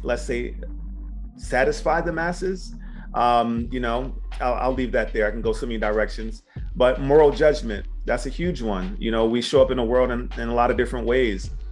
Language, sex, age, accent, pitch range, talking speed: English, male, 30-49, American, 115-135 Hz, 210 wpm